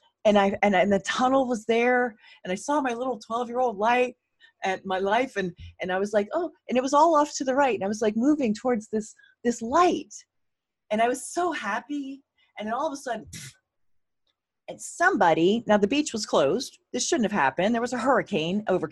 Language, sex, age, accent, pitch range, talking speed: English, female, 30-49, American, 170-250 Hz, 215 wpm